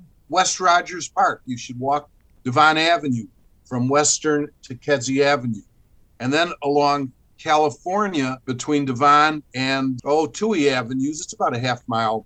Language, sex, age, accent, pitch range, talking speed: English, male, 50-69, American, 115-150 Hz, 135 wpm